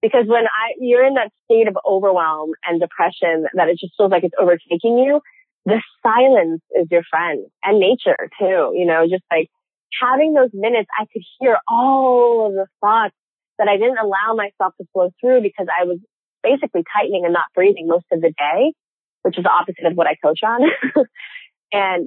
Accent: American